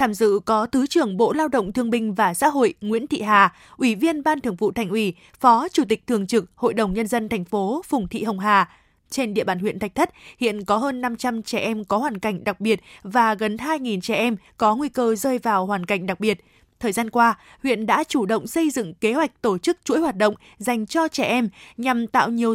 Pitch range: 215-265 Hz